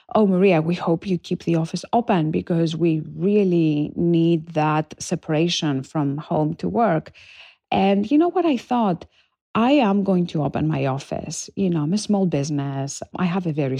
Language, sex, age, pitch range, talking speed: English, female, 40-59, 150-190 Hz, 185 wpm